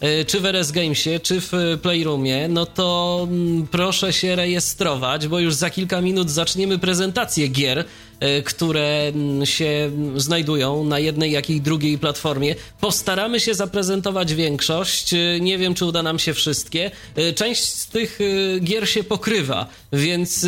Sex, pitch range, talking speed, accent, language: male, 150-185 Hz, 135 wpm, native, Polish